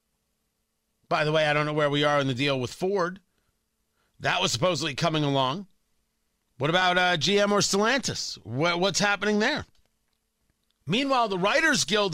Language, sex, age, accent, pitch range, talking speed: English, male, 40-59, American, 150-210 Hz, 160 wpm